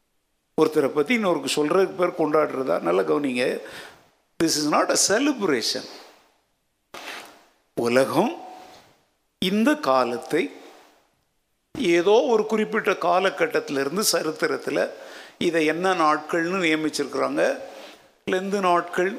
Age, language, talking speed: 60-79, Tamil, 80 wpm